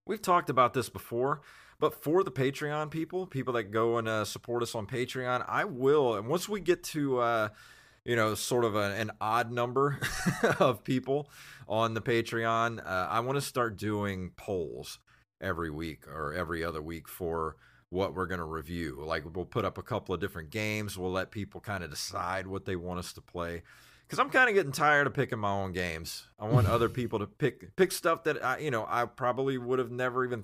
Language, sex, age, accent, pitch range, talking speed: English, male, 30-49, American, 95-130 Hz, 215 wpm